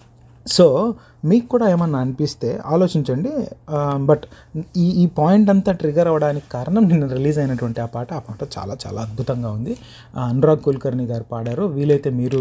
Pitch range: 125-170 Hz